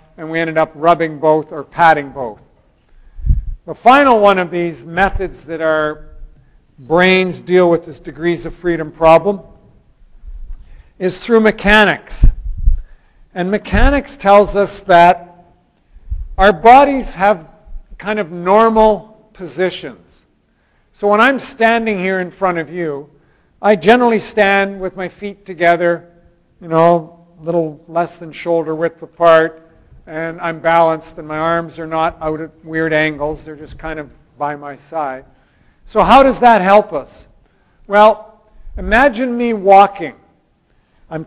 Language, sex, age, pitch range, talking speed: English, male, 50-69, 160-210 Hz, 140 wpm